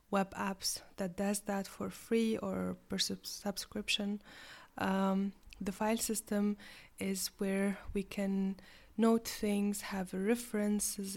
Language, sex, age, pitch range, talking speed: English, female, 20-39, 195-210 Hz, 120 wpm